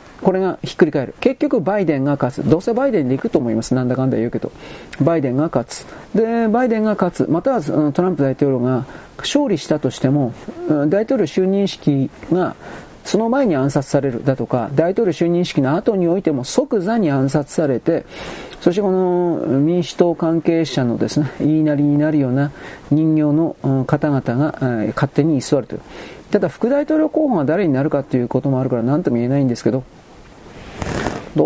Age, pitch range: 40-59, 130-170 Hz